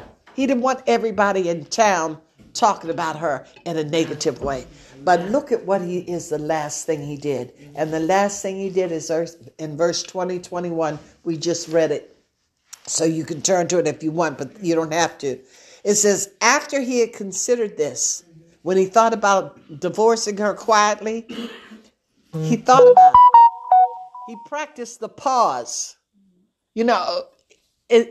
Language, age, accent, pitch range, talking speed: English, 60-79, American, 170-250 Hz, 165 wpm